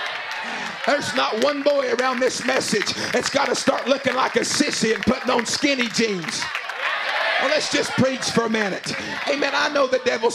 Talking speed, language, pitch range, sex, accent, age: 185 wpm, English, 235-265 Hz, male, American, 40-59